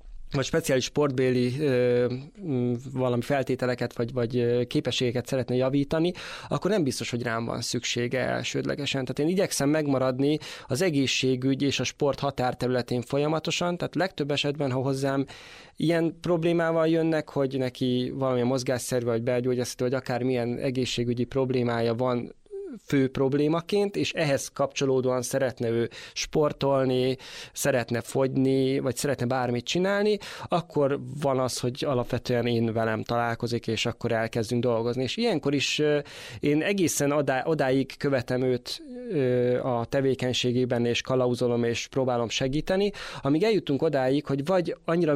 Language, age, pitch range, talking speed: English, 20-39, 125-145 Hz, 130 wpm